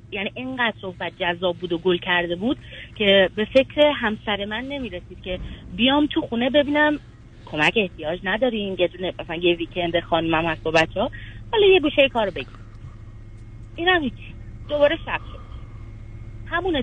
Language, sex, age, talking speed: Persian, female, 30-49, 160 wpm